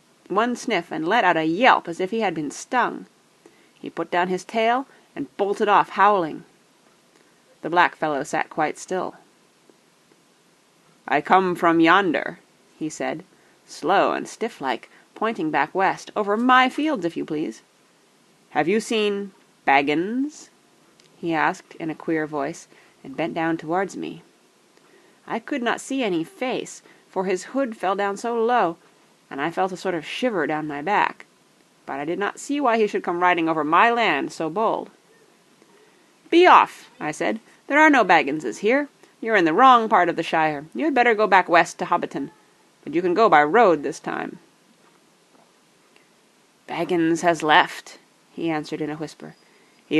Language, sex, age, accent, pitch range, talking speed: English, female, 30-49, American, 165-245 Hz, 170 wpm